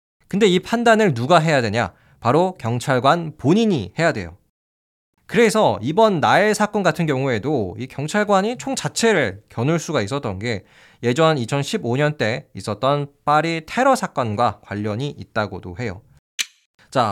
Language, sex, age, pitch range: Korean, male, 20-39, 115-185 Hz